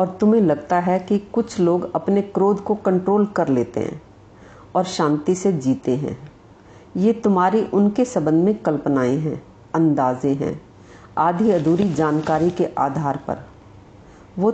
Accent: native